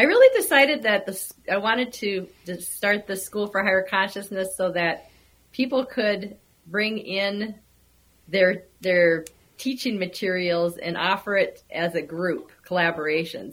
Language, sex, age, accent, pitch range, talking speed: English, female, 40-59, American, 175-200 Hz, 140 wpm